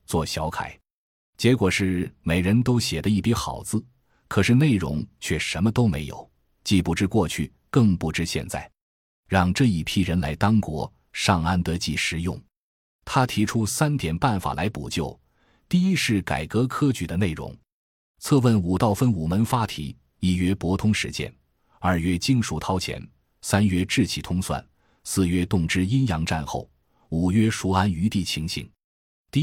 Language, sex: Chinese, male